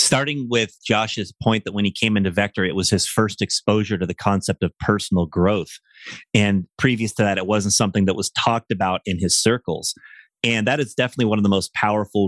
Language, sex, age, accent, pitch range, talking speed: English, male, 30-49, American, 95-110 Hz, 215 wpm